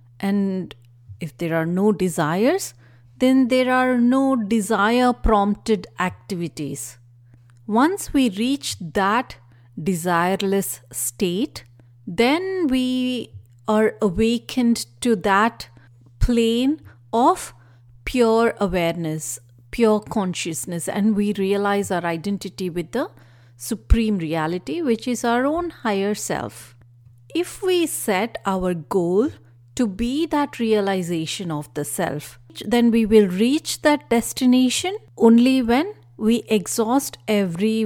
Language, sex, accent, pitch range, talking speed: English, female, Indian, 155-245 Hz, 110 wpm